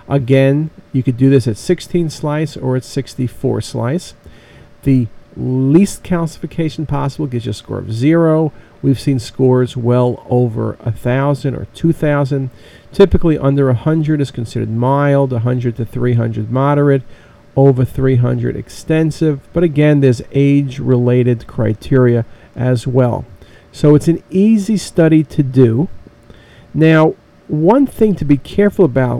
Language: English